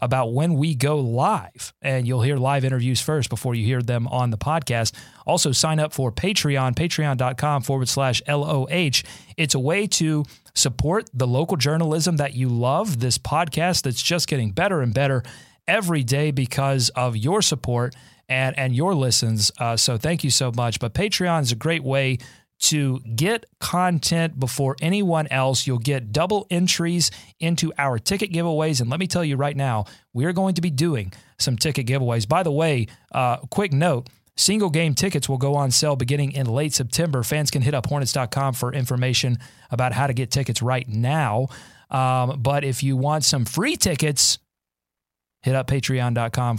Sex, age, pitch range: male, 30-49, 125-155 Hz